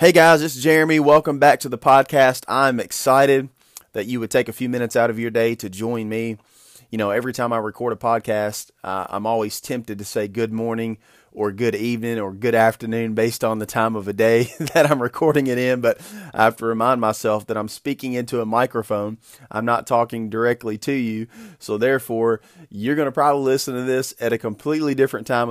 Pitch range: 115-135 Hz